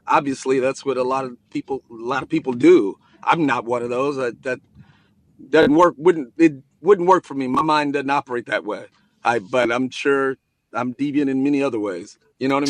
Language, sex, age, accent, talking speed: English, male, 40-59, American, 220 wpm